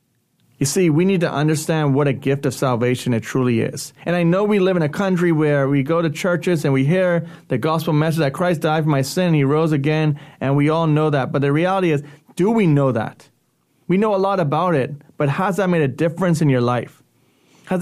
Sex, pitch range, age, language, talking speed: male, 135-165 Hz, 30-49, English, 245 wpm